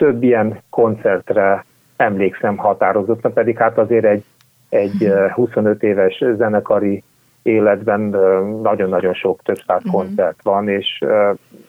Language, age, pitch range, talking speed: Hungarian, 30-49, 100-130 Hz, 105 wpm